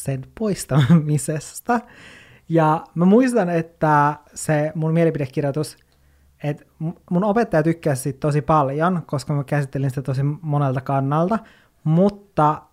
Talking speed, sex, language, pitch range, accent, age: 110 wpm, male, Finnish, 145-180 Hz, native, 20-39